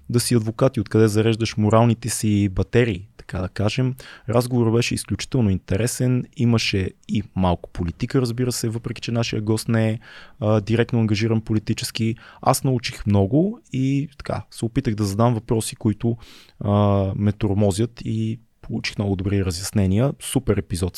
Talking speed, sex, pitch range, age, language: 150 wpm, male, 100-125 Hz, 20-39, Bulgarian